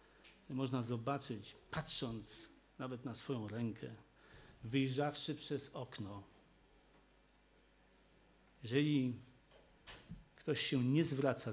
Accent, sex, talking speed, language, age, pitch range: native, male, 80 wpm, Polish, 50-69, 125-160 Hz